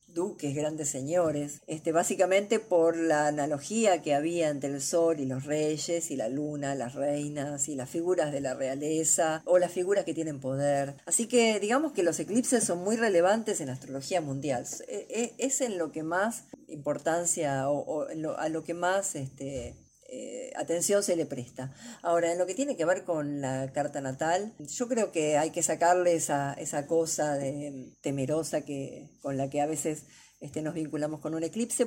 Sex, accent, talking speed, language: female, Argentinian, 185 wpm, Spanish